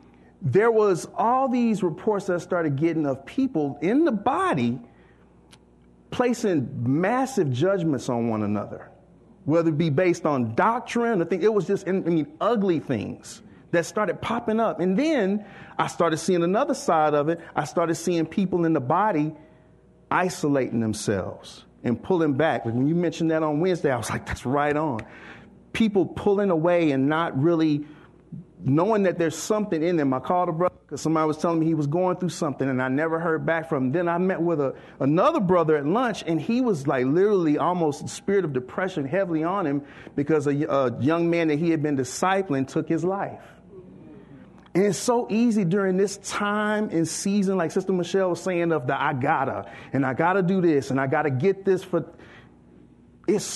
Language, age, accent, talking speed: English, 40-59, American, 190 wpm